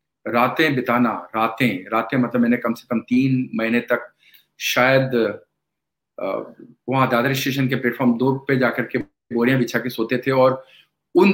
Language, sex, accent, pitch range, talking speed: Hindi, male, native, 120-150 Hz, 155 wpm